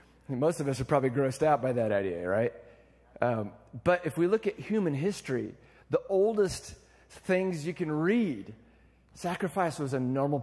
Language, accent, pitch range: English, American, 140-185 Hz